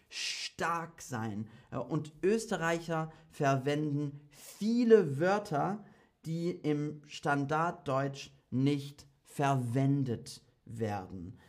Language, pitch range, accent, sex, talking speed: German, 115-160 Hz, German, male, 70 wpm